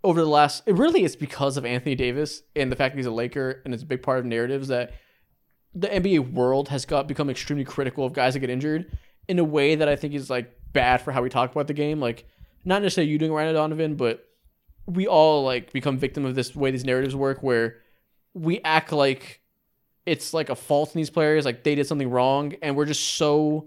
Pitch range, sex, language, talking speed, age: 130-160 Hz, male, English, 235 wpm, 20-39